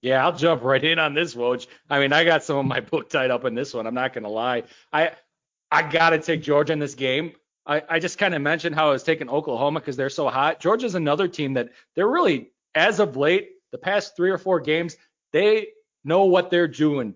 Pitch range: 160-200 Hz